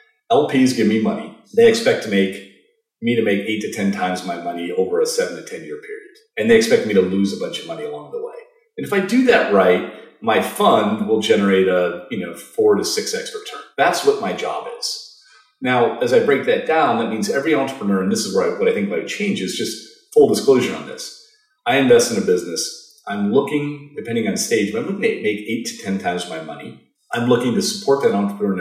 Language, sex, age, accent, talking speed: English, male, 40-59, American, 235 wpm